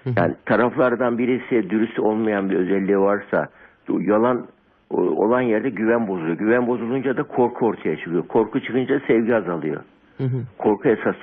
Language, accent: Turkish, native